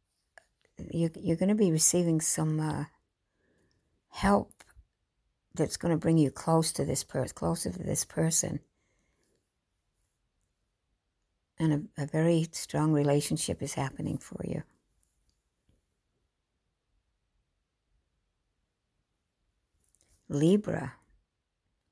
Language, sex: English, female